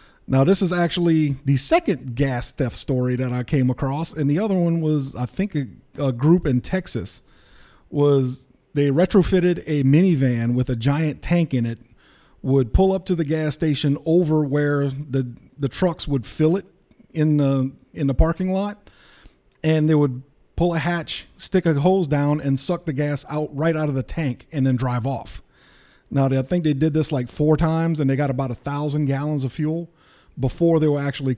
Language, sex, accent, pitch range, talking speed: English, male, American, 130-155 Hz, 195 wpm